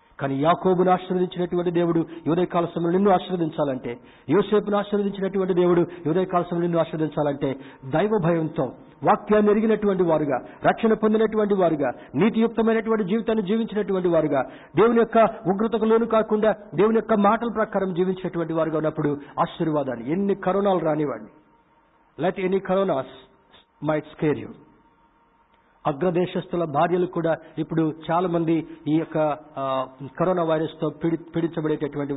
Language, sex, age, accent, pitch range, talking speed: Telugu, male, 50-69, native, 155-190 Hz, 105 wpm